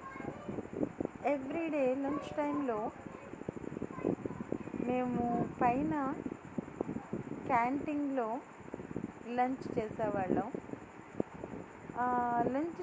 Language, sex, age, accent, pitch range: Telugu, female, 20-39, native, 235-285 Hz